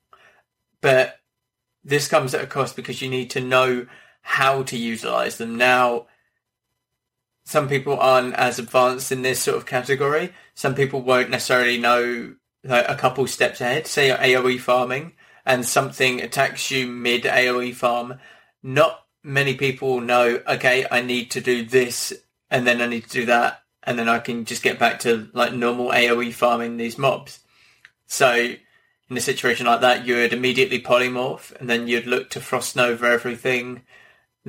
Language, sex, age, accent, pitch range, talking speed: English, male, 20-39, British, 120-130 Hz, 165 wpm